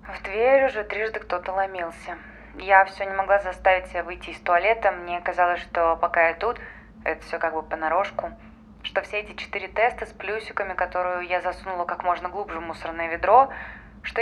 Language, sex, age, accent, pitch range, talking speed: Russian, female, 20-39, native, 170-200 Hz, 180 wpm